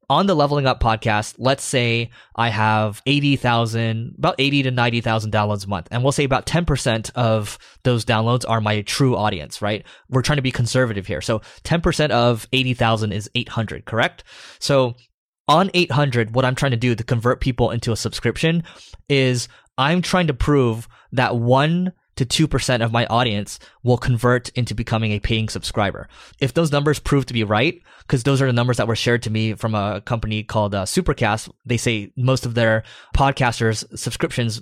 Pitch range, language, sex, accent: 110-135 Hz, English, male, American